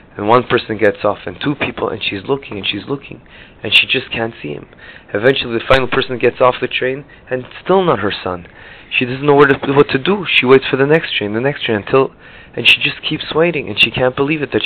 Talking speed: 255 wpm